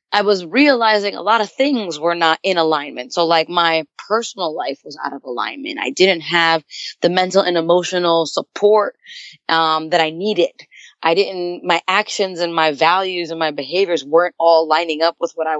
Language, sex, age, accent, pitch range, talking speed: English, female, 20-39, American, 165-210 Hz, 190 wpm